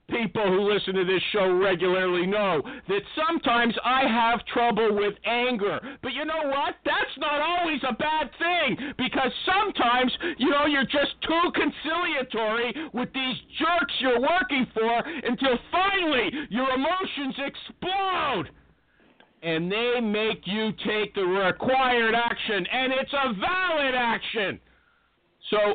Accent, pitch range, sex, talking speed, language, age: American, 205-295 Hz, male, 135 wpm, English, 50-69